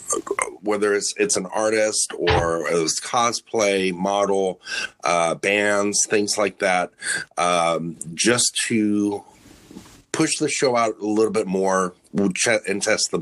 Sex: male